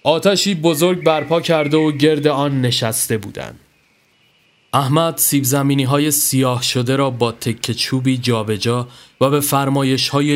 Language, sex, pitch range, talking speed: Persian, male, 125-155 Hz, 140 wpm